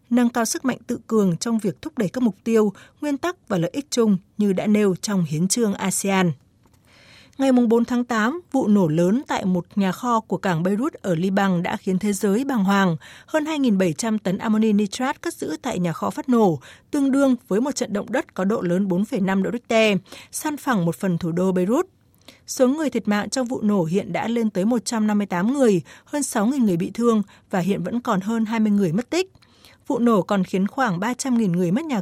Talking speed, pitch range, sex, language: 215 wpm, 185-245 Hz, female, Vietnamese